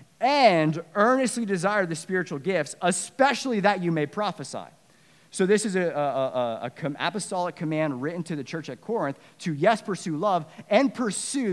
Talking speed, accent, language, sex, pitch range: 165 wpm, American, English, male, 140-185 Hz